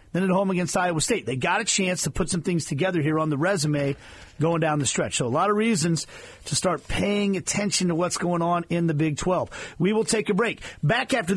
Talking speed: 250 wpm